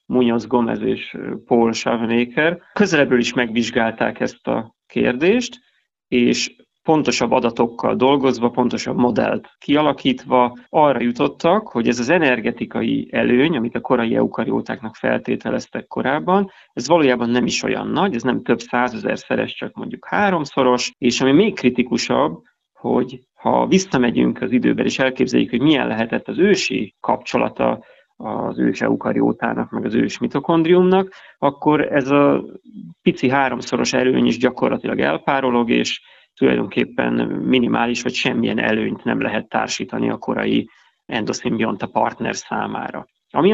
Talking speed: 130 wpm